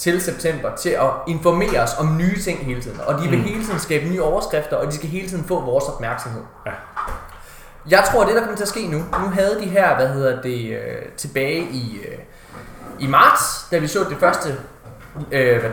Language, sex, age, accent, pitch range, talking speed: Danish, male, 20-39, native, 125-170 Hz, 205 wpm